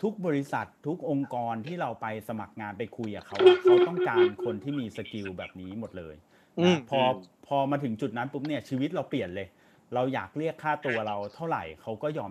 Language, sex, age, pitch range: Thai, male, 30-49, 105-140 Hz